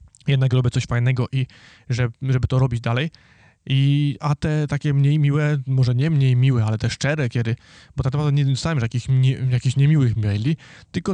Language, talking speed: Polish, 190 wpm